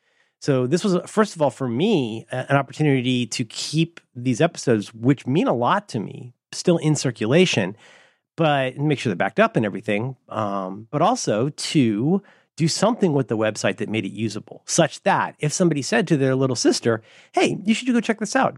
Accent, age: American, 40-59